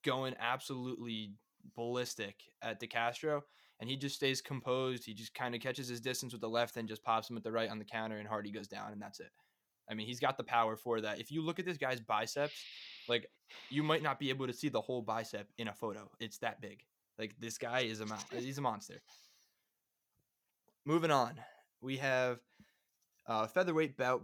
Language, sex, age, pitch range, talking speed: English, male, 20-39, 115-140 Hz, 215 wpm